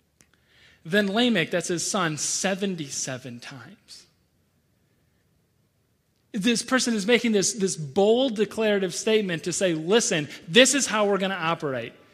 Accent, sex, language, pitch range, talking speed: American, male, English, 185-230 Hz, 130 wpm